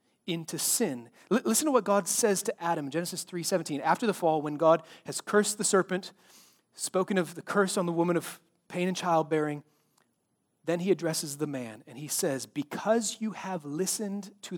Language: English